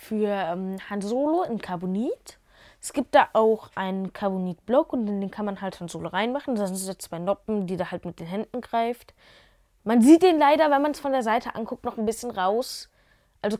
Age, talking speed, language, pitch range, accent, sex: 20-39, 215 wpm, German, 180-240 Hz, German, female